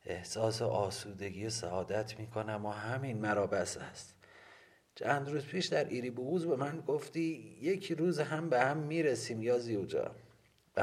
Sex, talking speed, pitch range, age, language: male, 145 wpm, 105-130 Hz, 40-59, Persian